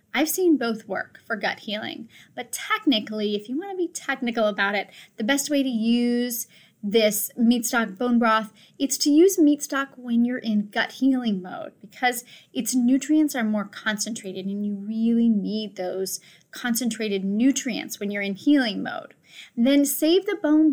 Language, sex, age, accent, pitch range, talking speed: English, female, 10-29, American, 210-275 Hz, 175 wpm